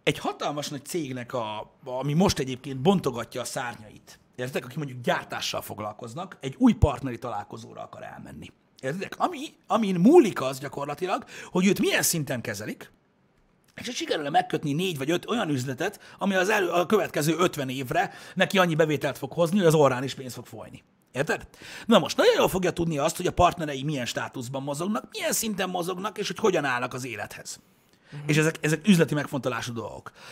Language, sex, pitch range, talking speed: Hungarian, male, 130-185 Hz, 180 wpm